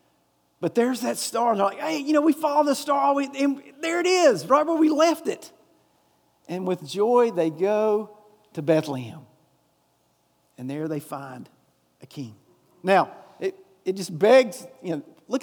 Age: 40-59